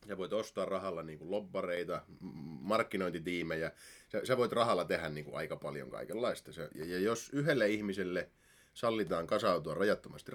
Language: Finnish